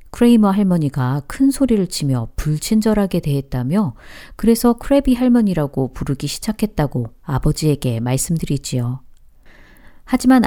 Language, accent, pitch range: Korean, native, 140-205 Hz